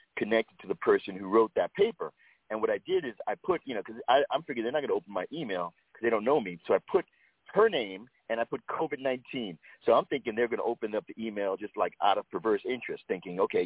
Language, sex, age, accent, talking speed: English, male, 40-59, American, 265 wpm